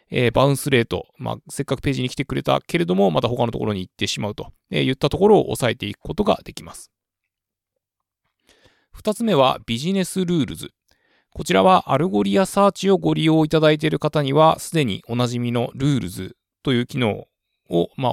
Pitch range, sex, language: 115-160 Hz, male, Japanese